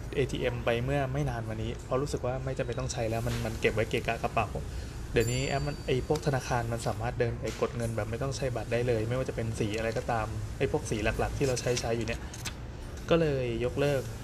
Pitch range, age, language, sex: 115-140 Hz, 20-39, Thai, male